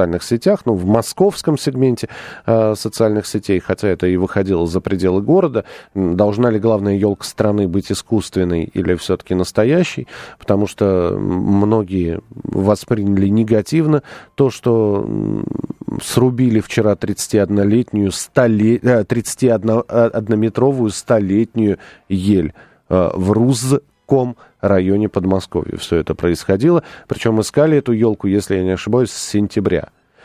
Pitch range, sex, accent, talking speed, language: 100-125 Hz, male, native, 115 wpm, Russian